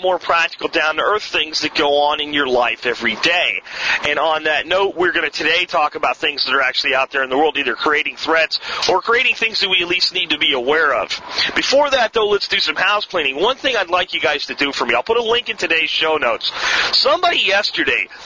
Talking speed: 245 wpm